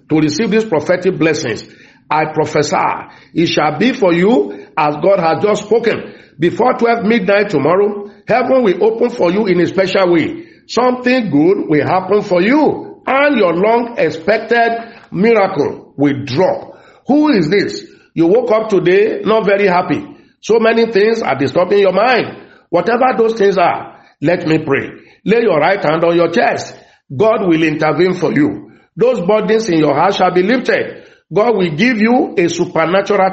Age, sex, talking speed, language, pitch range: 50-69, male, 165 wpm, English, 170-250 Hz